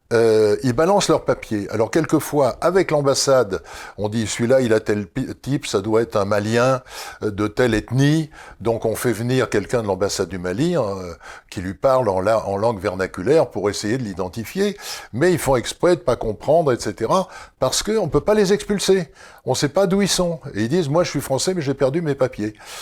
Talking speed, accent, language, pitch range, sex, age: 210 wpm, French, French, 105-150 Hz, male, 60-79